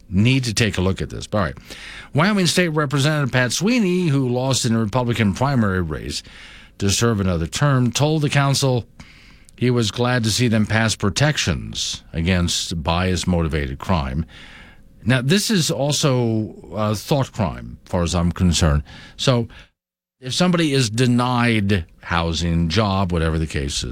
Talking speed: 155 wpm